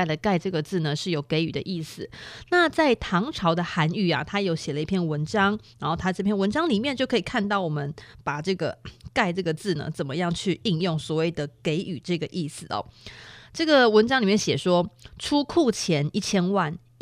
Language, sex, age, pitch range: Chinese, female, 20-39, 160-205 Hz